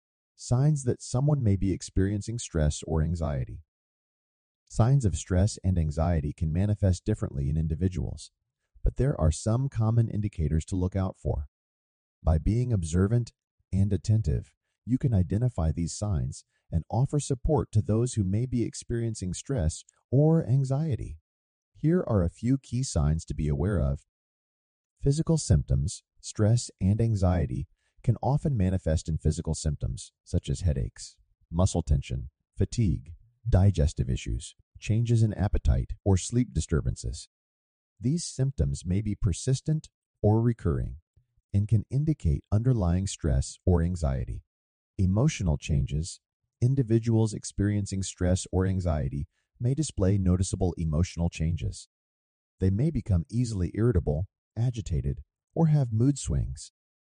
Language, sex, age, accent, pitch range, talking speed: English, male, 40-59, American, 80-115 Hz, 130 wpm